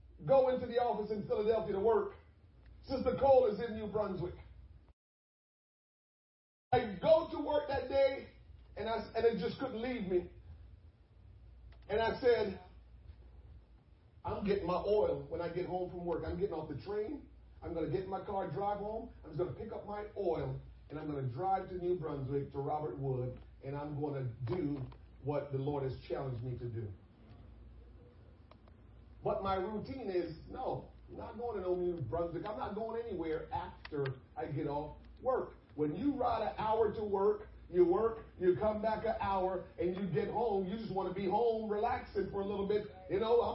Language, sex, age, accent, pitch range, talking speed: English, male, 40-59, American, 150-235 Hz, 195 wpm